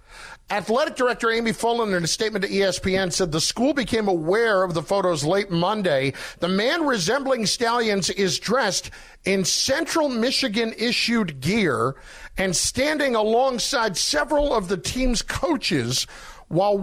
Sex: male